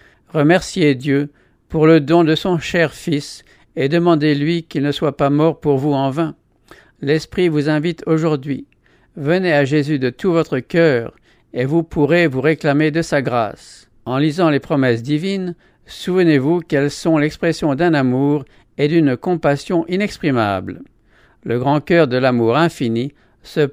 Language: English